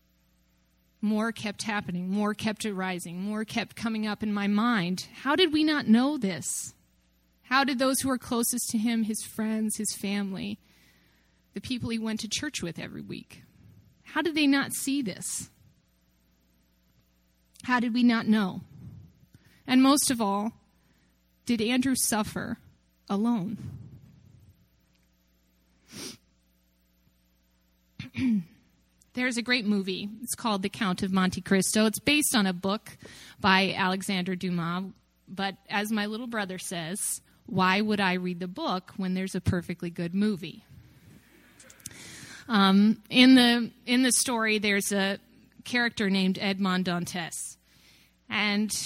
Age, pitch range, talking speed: 30-49, 175-230 Hz, 135 wpm